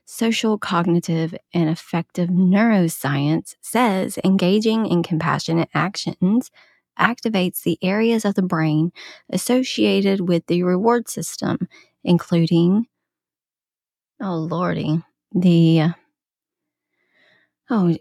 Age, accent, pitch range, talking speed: 20-39, American, 165-205 Hz, 85 wpm